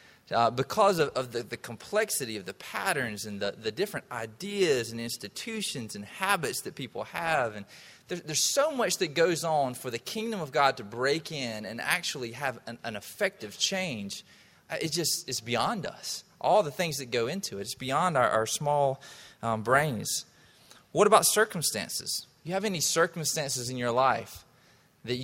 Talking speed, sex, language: 180 wpm, male, English